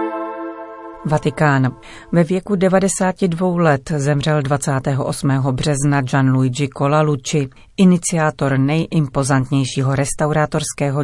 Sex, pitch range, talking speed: female, 130-155 Hz, 70 wpm